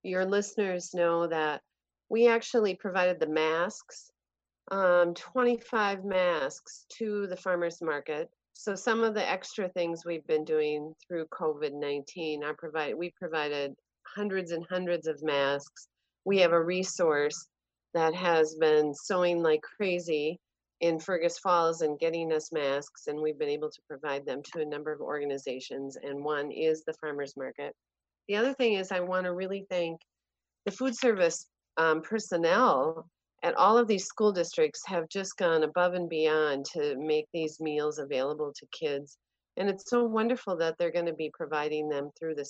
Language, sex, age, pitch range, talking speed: English, female, 40-59, 150-185 Hz, 160 wpm